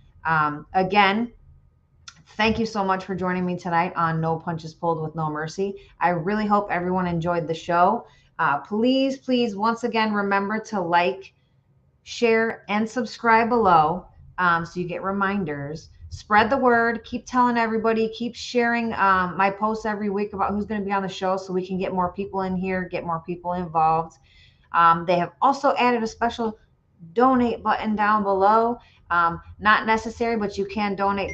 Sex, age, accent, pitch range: female, 30-49, American, 175-215 Hz